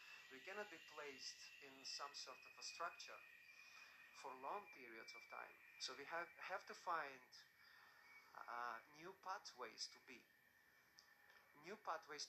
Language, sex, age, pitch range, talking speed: English, male, 40-59, 140-195 Hz, 135 wpm